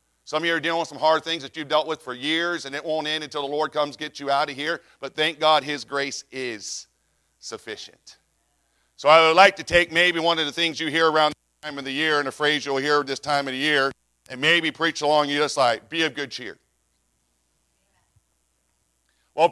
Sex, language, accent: male, English, American